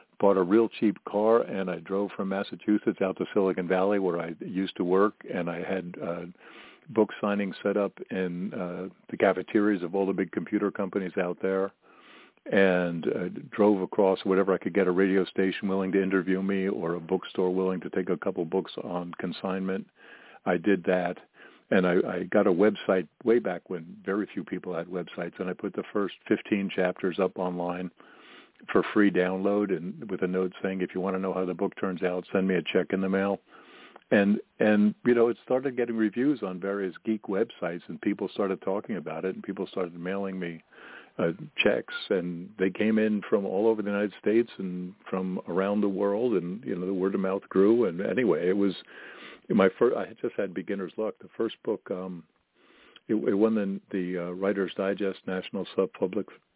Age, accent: 50-69, American